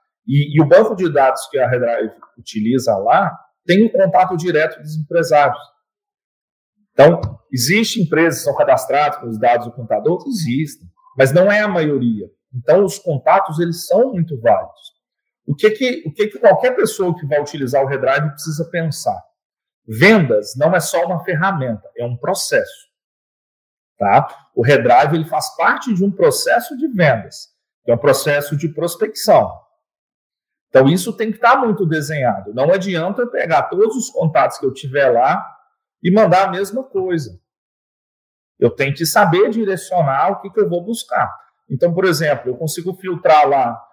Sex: male